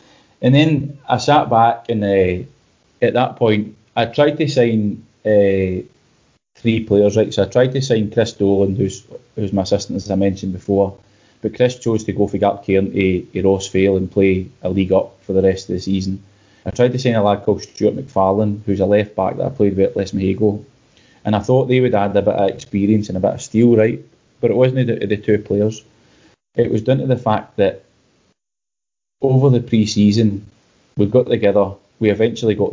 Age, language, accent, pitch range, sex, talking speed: 20-39, English, British, 100-115 Hz, male, 215 wpm